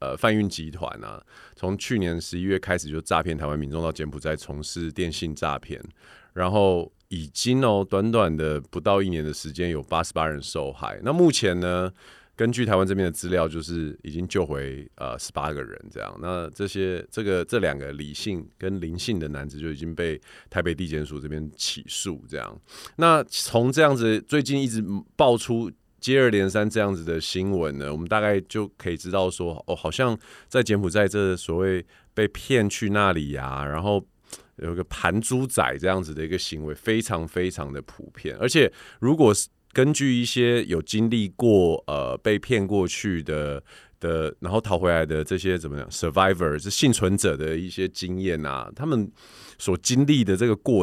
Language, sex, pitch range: Chinese, male, 80-110 Hz